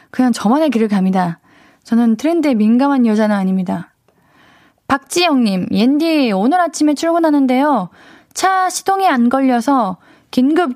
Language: Korean